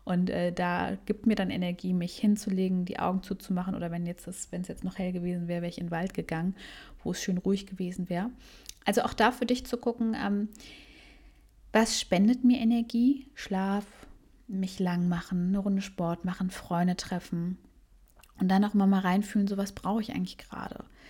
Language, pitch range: German, 185-220 Hz